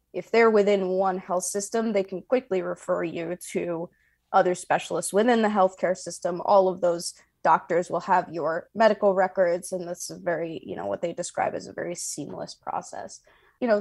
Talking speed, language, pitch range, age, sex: 185 wpm, English, 175-205 Hz, 20-39, female